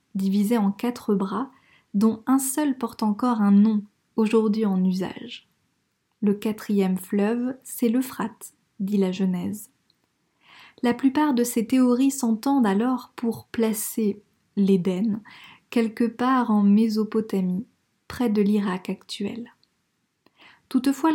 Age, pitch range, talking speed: 20-39, 200-240 Hz, 115 wpm